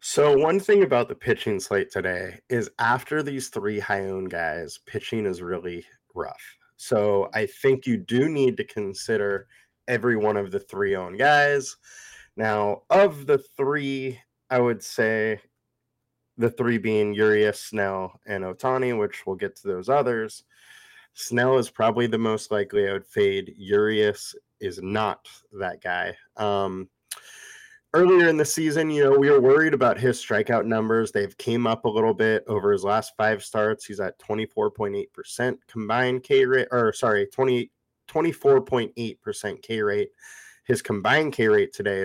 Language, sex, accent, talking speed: English, male, American, 155 wpm